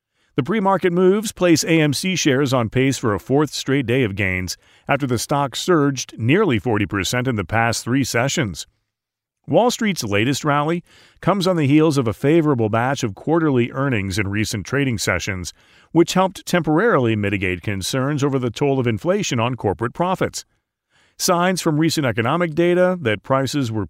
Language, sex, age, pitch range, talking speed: English, male, 40-59, 110-150 Hz, 165 wpm